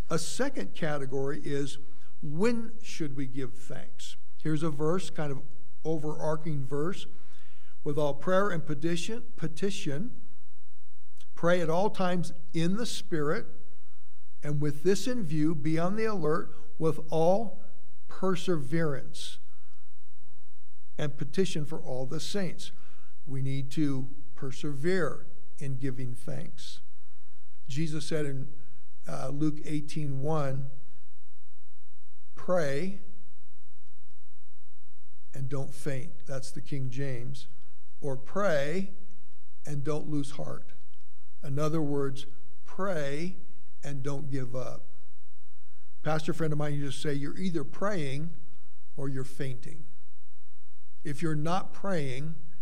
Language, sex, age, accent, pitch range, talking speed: English, male, 60-79, American, 125-160 Hz, 115 wpm